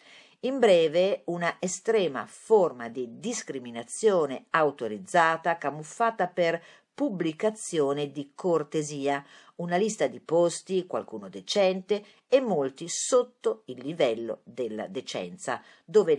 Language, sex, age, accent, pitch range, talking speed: Italian, female, 50-69, native, 145-215 Hz, 100 wpm